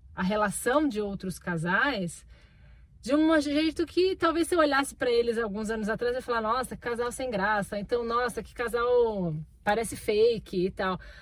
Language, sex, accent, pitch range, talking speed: Portuguese, female, Brazilian, 200-255 Hz, 175 wpm